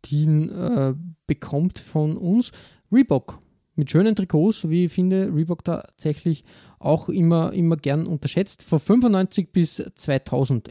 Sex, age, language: male, 20-39, German